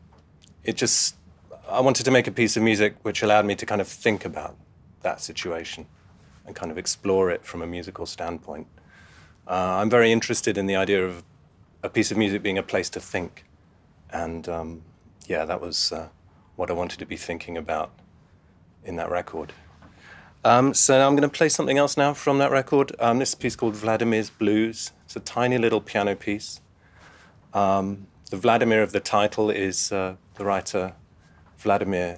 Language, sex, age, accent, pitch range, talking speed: English, male, 30-49, British, 90-110 Hz, 180 wpm